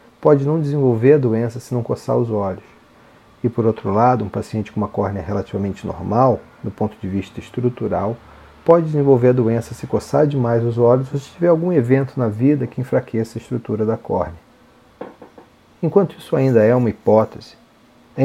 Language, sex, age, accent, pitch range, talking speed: Portuguese, male, 40-59, Brazilian, 105-130 Hz, 180 wpm